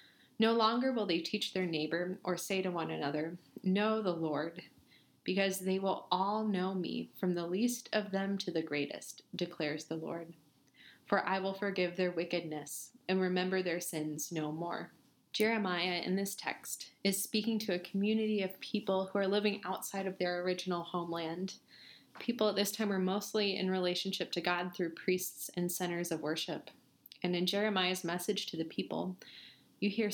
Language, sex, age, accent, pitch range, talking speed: English, female, 20-39, American, 165-195 Hz, 175 wpm